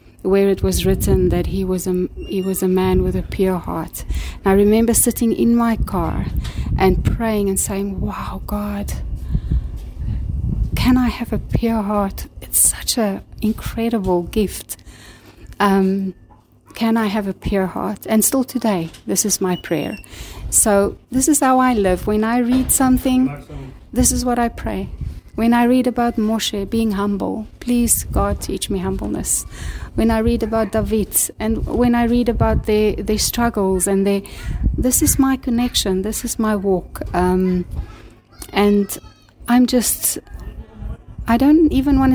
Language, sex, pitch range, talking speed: English, female, 190-240 Hz, 160 wpm